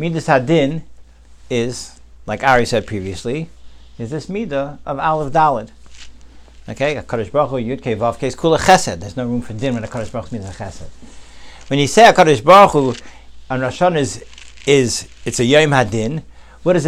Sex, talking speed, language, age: male, 175 wpm, English, 60-79